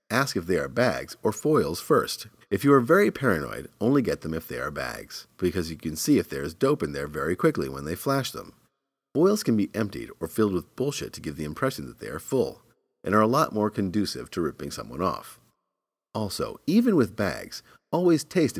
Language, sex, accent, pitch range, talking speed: English, male, American, 85-130 Hz, 220 wpm